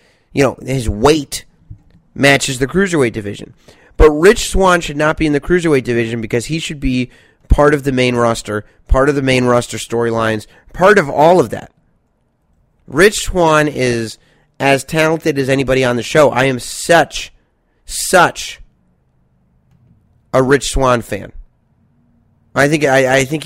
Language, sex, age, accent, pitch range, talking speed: English, male, 30-49, American, 115-155 Hz, 155 wpm